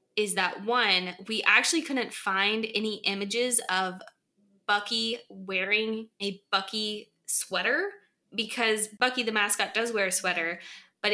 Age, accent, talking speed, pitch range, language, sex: 20-39, American, 130 wpm, 190-225 Hz, English, female